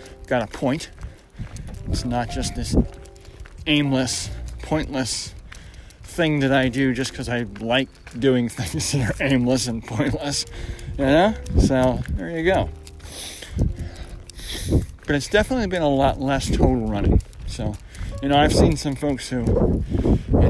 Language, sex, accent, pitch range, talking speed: English, male, American, 90-145 Hz, 140 wpm